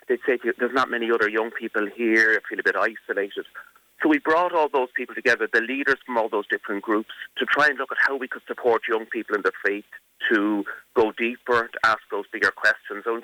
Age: 30-49